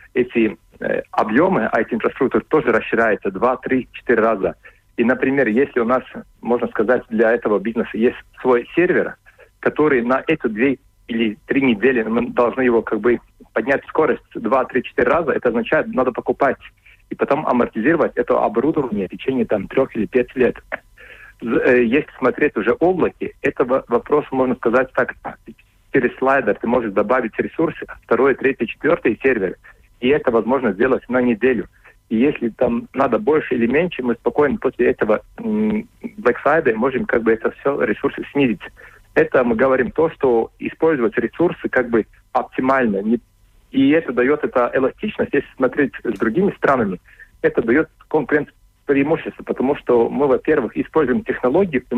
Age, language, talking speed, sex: 40-59, Russian, 155 wpm, male